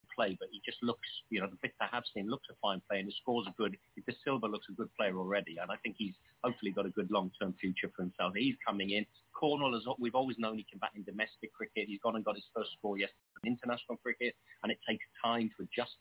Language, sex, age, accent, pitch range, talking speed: English, male, 30-49, British, 100-120 Hz, 265 wpm